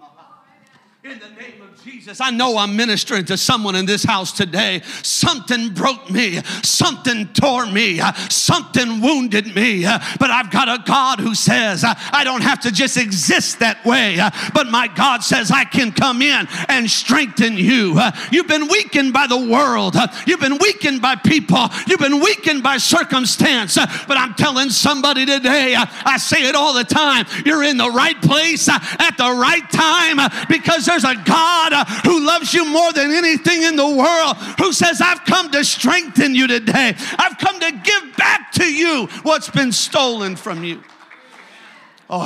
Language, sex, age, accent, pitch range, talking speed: English, male, 50-69, American, 185-280 Hz, 170 wpm